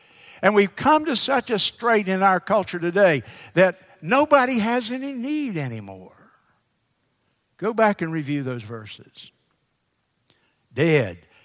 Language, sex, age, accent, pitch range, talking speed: English, male, 60-79, American, 135-190 Hz, 125 wpm